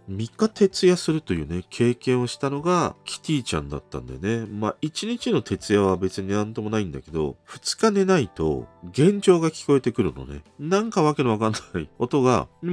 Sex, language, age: male, Japanese, 40-59